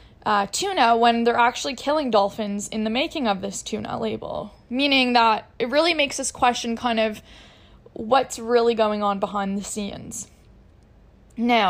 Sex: female